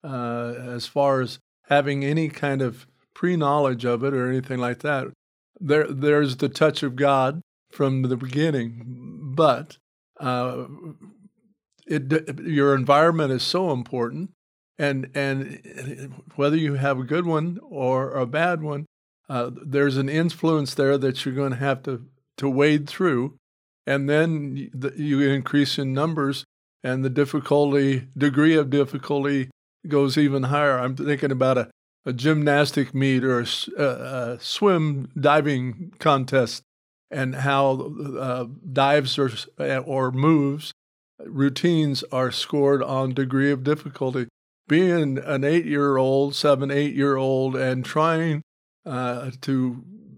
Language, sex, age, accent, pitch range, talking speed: English, male, 50-69, American, 130-150 Hz, 130 wpm